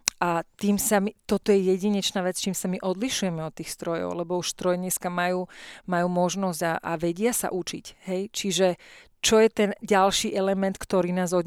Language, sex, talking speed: Slovak, female, 195 wpm